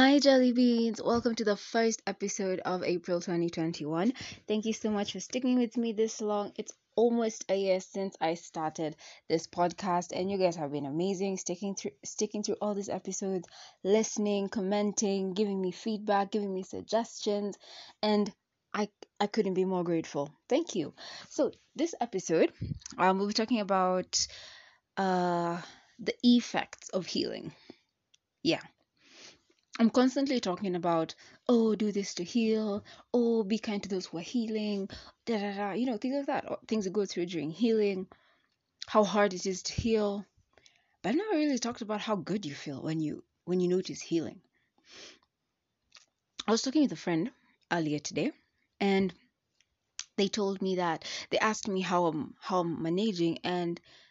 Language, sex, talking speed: English, female, 160 wpm